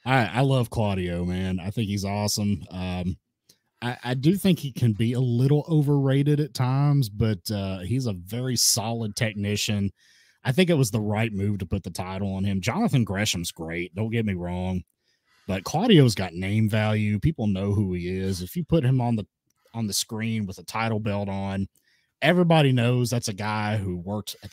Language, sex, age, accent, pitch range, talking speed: English, male, 30-49, American, 95-120 Hz, 195 wpm